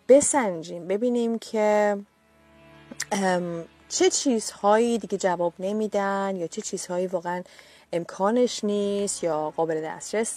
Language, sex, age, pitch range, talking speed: Persian, female, 30-49, 175-235 Hz, 100 wpm